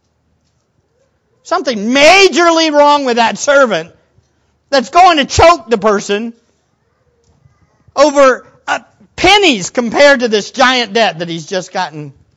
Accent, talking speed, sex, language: American, 115 wpm, male, English